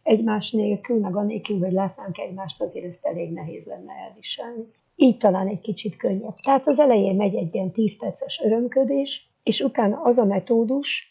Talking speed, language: 165 wpm, Hungarian